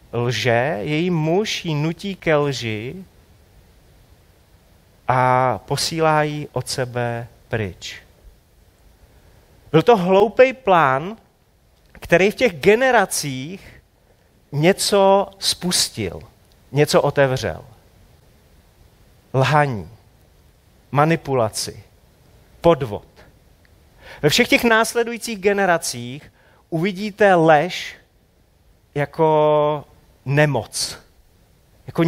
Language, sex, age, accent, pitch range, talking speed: Czech, male, 40-59, native, 120-195 Hz, 70 wpm